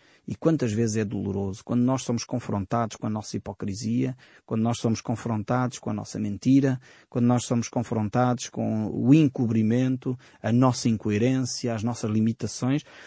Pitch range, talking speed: 115-135 Hz, 155 wpm